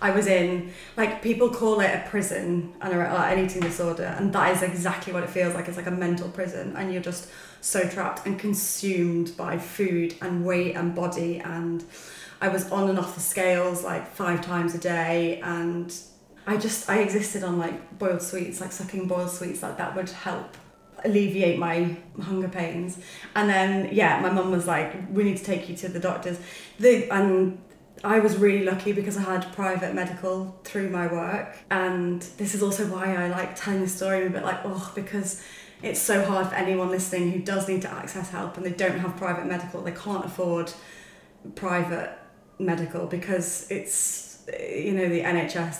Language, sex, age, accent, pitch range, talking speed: English, female, 20-39, British, 175-195 Hz, 190 wpm